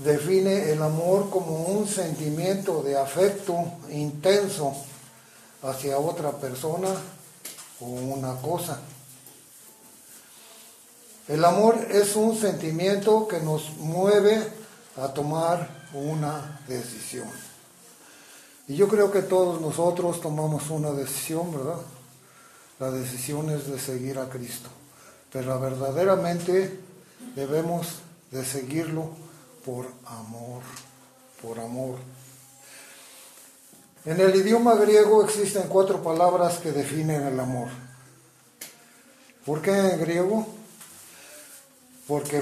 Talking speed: 100 wpm